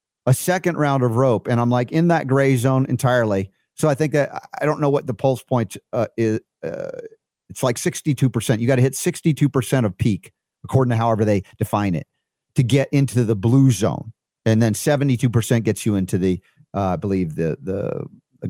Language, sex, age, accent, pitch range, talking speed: English, male, 50-69, American, 110-140 Hz, 195 wpm